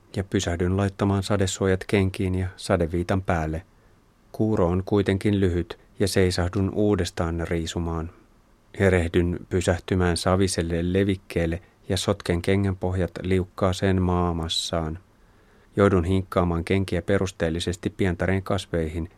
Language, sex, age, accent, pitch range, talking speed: Finnish, male, 30-49, native, 85-100 Hz, 100 wpm